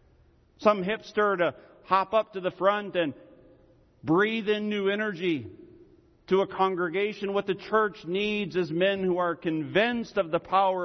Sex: male